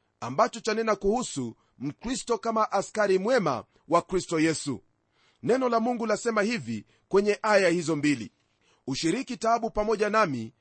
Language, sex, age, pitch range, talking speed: Swahili, male, 40-59, 160-225 Hz, 130 wpm